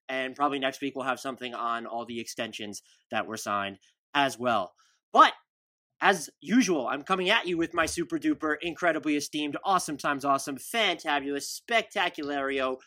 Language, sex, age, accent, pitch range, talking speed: English, male, 20-39, American, 130-155 Hz, 150 wpm